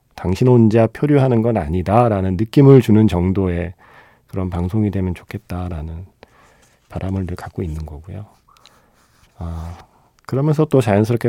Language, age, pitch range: Korean, 40-59, 90-125 Hz